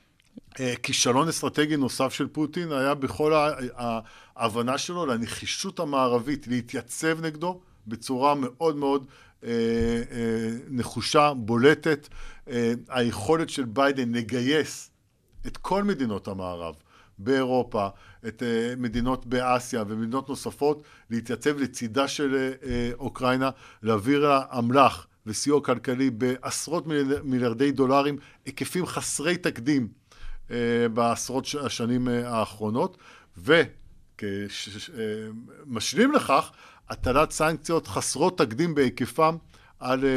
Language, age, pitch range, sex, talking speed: Hebrew, 50-69, 115-145 Hz, male, 95 wpm